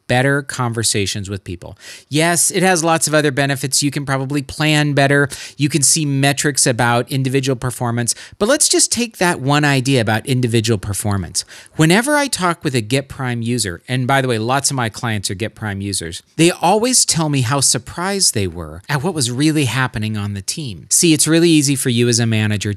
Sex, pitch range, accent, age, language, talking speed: male, 115-150 Hz, American, 40-59, English, 205 wpm